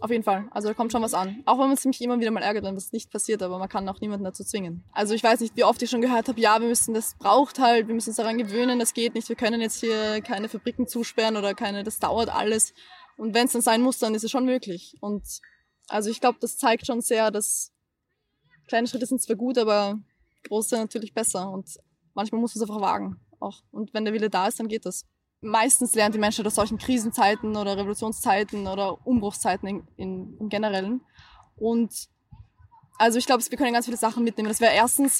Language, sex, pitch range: German, female, 215-240 Hz